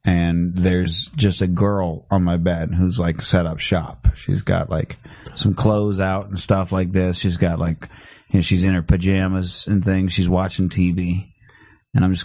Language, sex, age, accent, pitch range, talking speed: English, male, 30-49, American, 95-130 Hz, 195 wpm